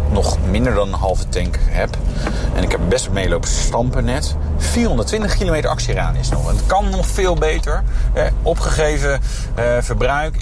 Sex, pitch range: male, 100-140 Hz